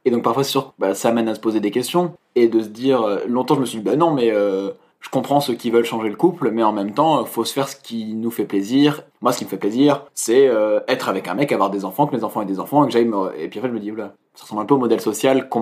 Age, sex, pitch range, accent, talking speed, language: 20-39, male, 105-130 Hz, French, 325 wpm, French